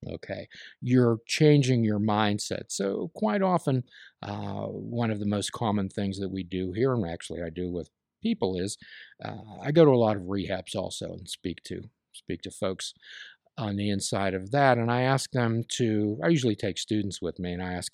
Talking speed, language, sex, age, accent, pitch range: 195 wpm, English, male, 50-69, American, 95-135 Hz